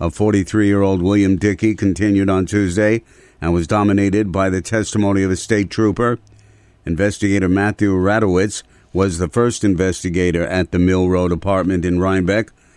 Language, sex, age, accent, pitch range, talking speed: English, male, 50-69, American, 90-110 Hz, 145 wpm